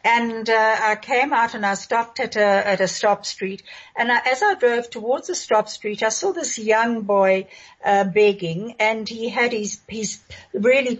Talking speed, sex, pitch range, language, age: 195 wpm, female, 190-235 Hz, English, 60-79